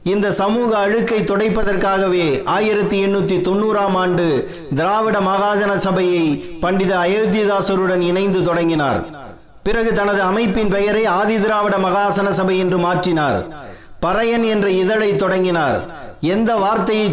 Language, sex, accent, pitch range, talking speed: Tamil, male, native, 185-210 Hz, 100 wpm